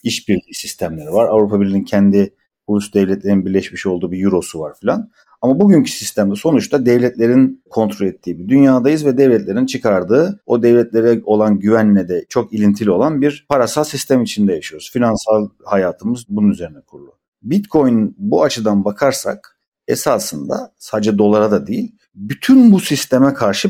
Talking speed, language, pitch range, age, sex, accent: 145 wpm, Turkish, 110-150 Hz, 50-69, male, native